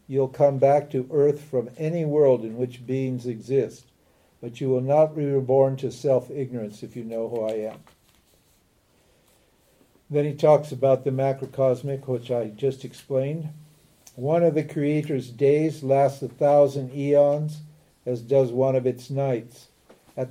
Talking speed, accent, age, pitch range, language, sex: 155 wpm, American, 50-69, 130-150 Hz, English, male